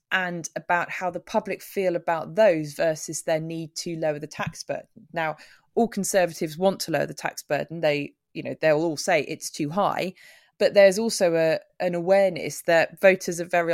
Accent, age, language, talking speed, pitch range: British, 20-39, English, 190 wpm, 150-180 Hz